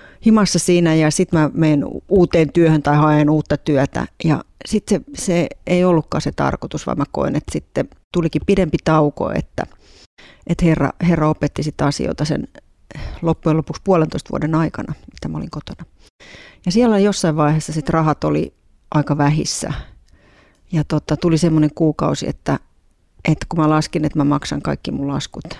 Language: Finnish